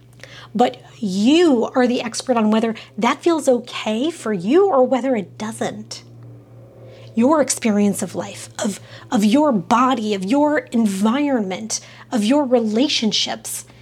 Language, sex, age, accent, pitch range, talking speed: English, female, 30-49, American, 215-265 Hz, 130 wpm